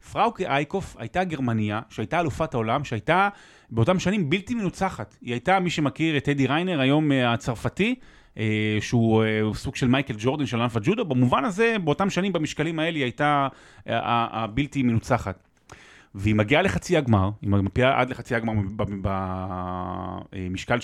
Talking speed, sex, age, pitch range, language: 140 wpm, male, 30-49, 110-155 Hz, Hebrew